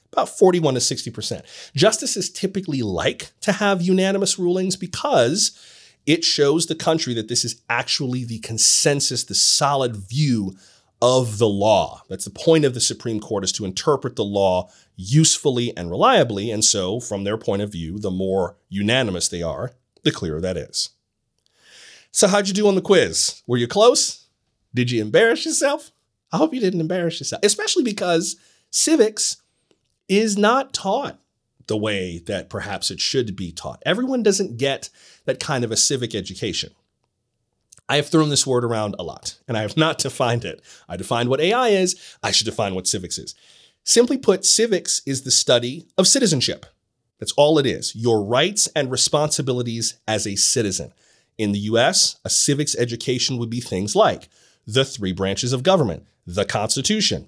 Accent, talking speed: American, 170 wpm